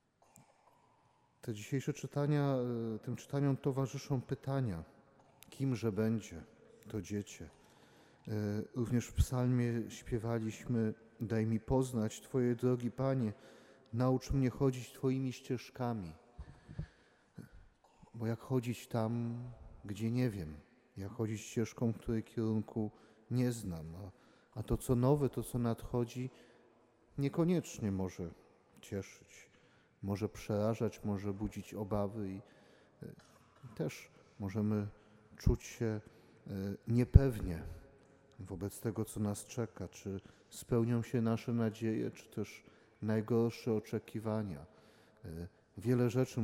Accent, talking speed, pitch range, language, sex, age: native, 100 wpm, 100-120 Hz, Polish, male, 40-59